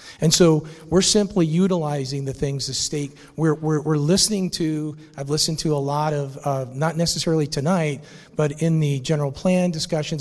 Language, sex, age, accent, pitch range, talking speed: English, male, 40-59, American, 140-165 Hz, 175 wpm